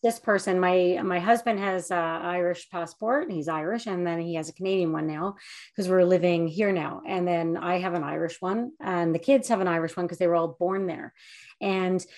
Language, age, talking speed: English, 30-49, 225 wpm